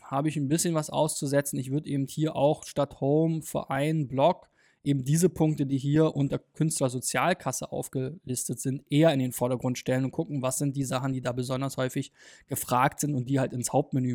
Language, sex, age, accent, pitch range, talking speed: German, male, 20-39, German, 130-155 Hz, 195 wpm